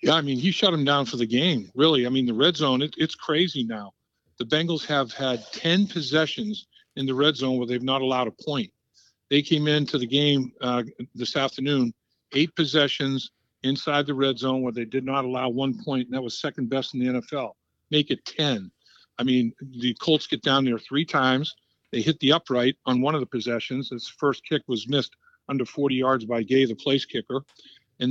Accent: American